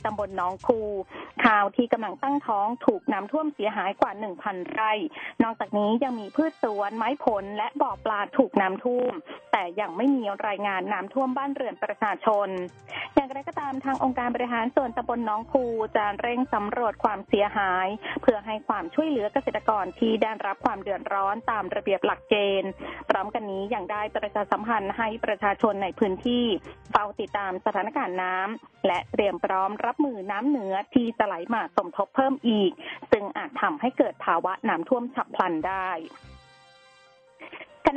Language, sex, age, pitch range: Thai, female, 20-39, 205-265 Hz